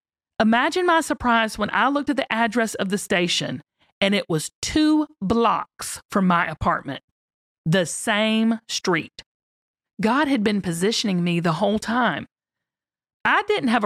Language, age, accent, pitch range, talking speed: English, 40-59, American, 170-250 Hz, 145 wpm